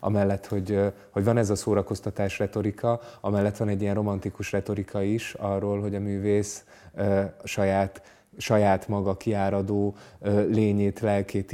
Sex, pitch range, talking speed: male, 95-105 Hz, 130 wpm